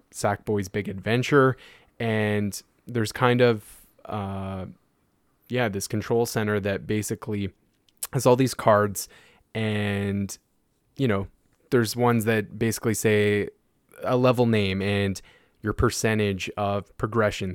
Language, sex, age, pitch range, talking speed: English, male, 20-39, 100-115 Hz, 115 wpm